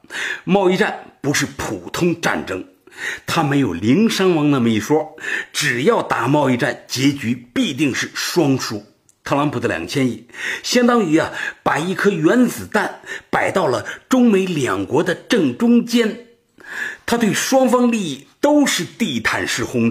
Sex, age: male, 50-69